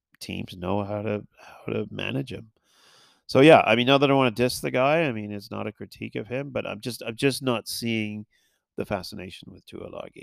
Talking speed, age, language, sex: 230 wpm, 30-49, English, male